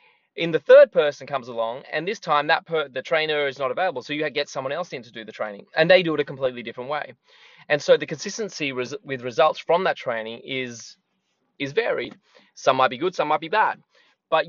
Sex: male